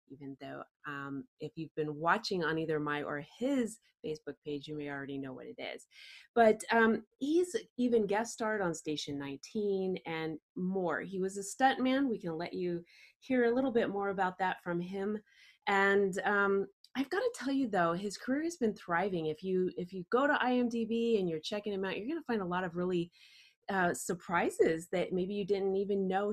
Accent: American